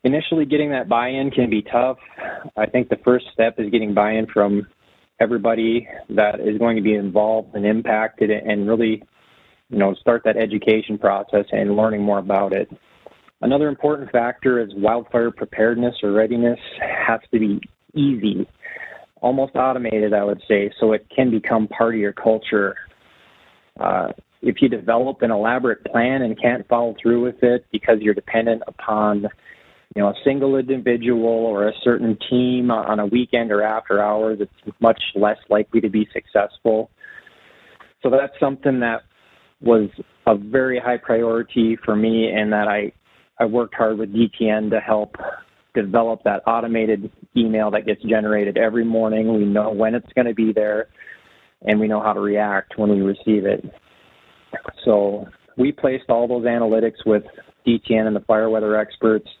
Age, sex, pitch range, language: 20-39, male, 105-120 Hz, English